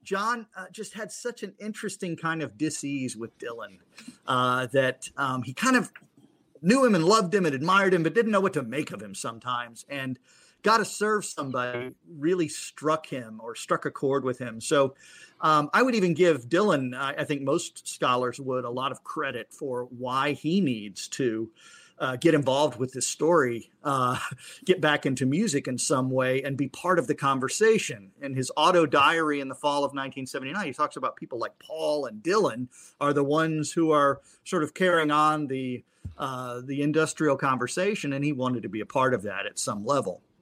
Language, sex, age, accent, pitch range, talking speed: English, male, 40-59, American, 130-165 Hz, 200 wpm